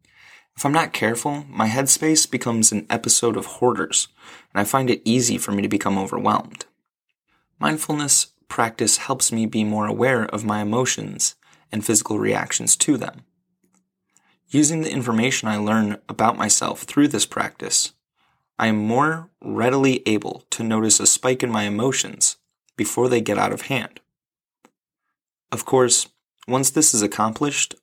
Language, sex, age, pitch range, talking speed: English, male, 20-39, 105-130 Hz, 150 wpm